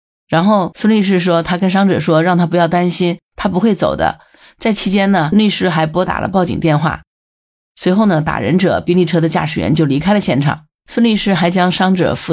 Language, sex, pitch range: Chinese, female, 160-195 Hz